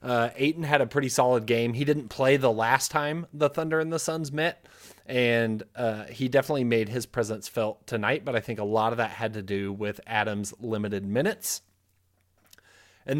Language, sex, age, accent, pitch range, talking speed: English, male, 20-39, American, 110-140 Hz, 195 wpm